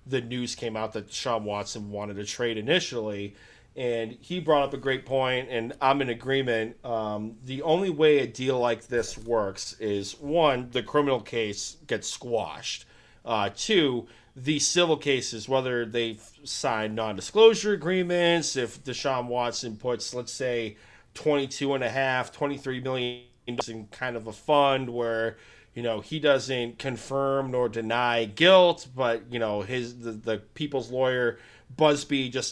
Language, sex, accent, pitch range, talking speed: English, male, American, 115-140 Hz, 150 wpm